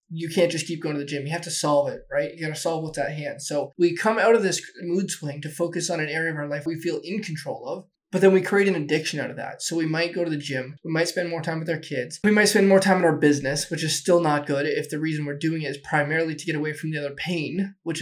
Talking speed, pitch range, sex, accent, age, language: 315 wpm, 145-175 Hz, male, American, 20-39, English